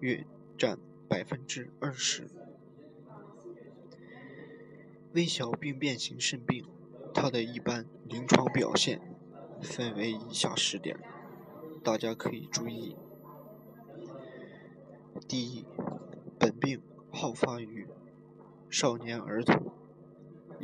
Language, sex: Chinese, male